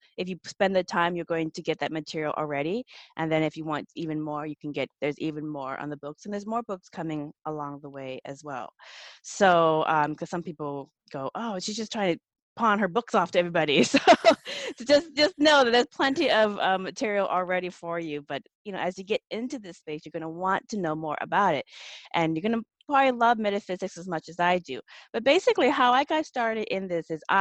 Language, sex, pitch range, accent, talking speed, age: English, female, 155-205 Hz, American, 235 wpm, 20-39